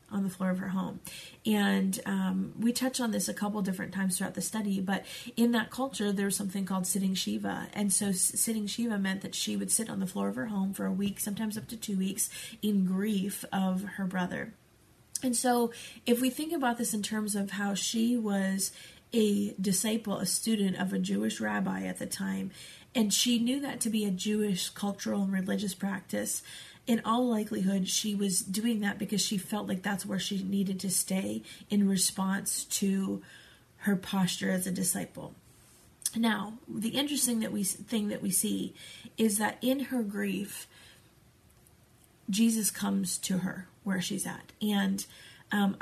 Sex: female